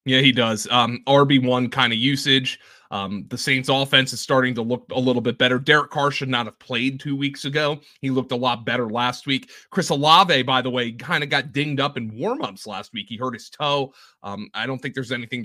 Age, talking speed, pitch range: 30-49, 235 wpm, 115-145 Hz